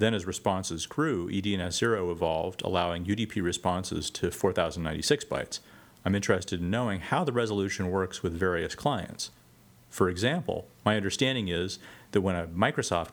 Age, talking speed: 40-59, 145 wpm